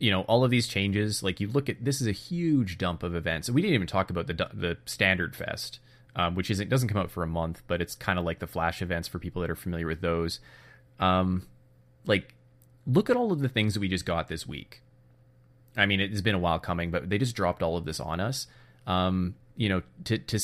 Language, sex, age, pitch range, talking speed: English, male, 20-39, 90-125 Hz, 250 wpm